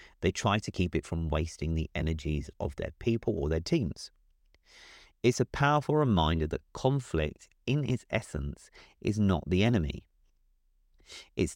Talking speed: 150 wpm